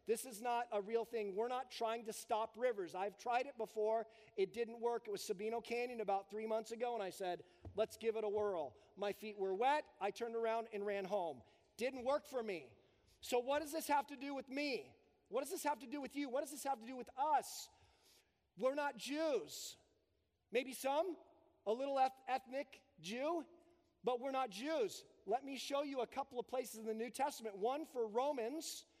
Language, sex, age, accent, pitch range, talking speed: English, male, 40-59, American, 230-285 Hz, 210 wpm